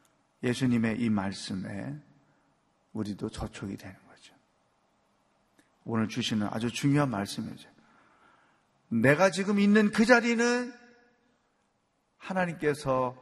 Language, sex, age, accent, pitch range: Korean, male, 30-49, native, 135-225 Hz